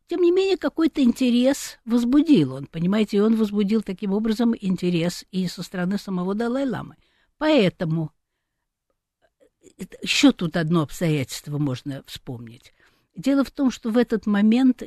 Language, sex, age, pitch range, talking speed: Russian, female, 60-79, 150-230 Hz, 130 wpm